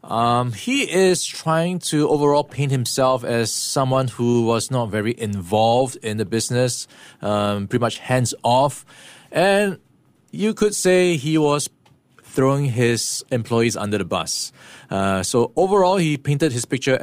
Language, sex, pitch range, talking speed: English, male, 110-140 Hz, 145 wpm